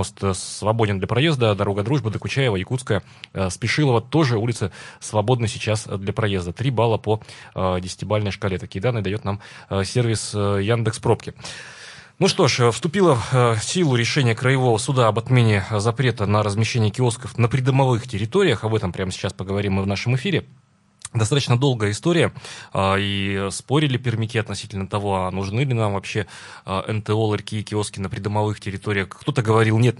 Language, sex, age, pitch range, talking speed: Russian, male, 20-39, 100-120 Hz, 150 wpm